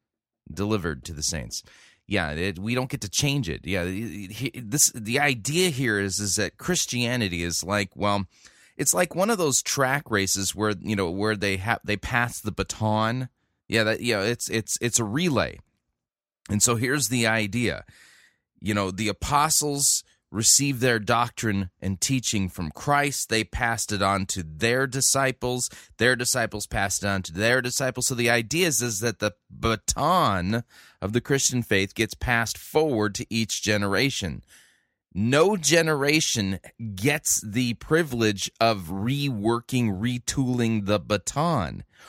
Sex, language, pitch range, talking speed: male, English, 100-130 Hz, 160 wpm